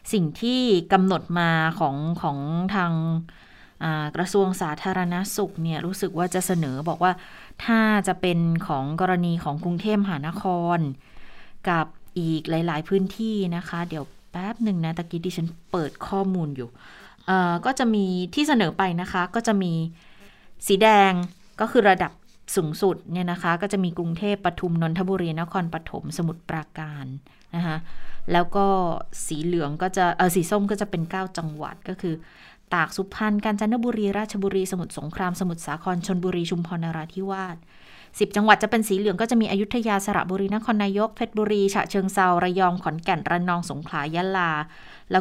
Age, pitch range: 20-39, 165-195 Hz